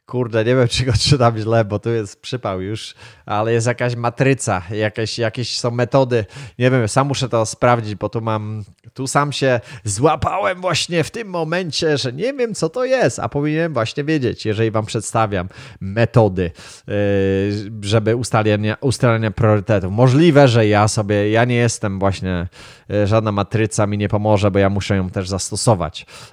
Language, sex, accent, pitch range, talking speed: Polish, male, native, 100-130 Hz, 170 wpm